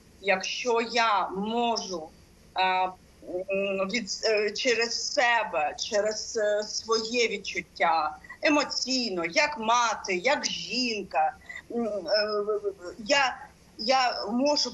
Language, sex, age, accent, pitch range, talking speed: Ukrainian, female, 30-49, native, 190-250 Hz, 75 wpm